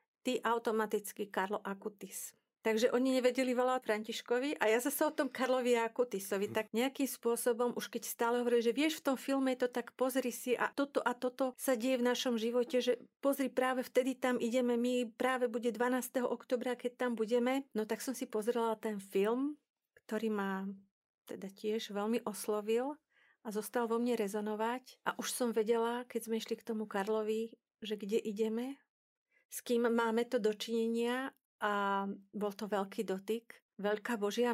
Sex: female